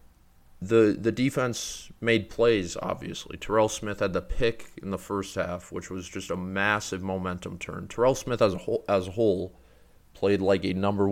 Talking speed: 185 wpm